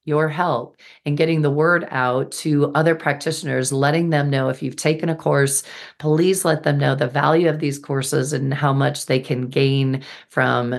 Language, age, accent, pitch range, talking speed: English, 40-59, American, 130-150 Hz, 190 wpm